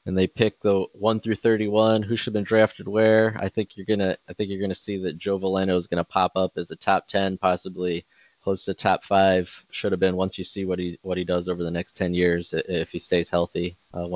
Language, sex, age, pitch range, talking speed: English, male, 20-39, 90-100 Hz, 250 wpm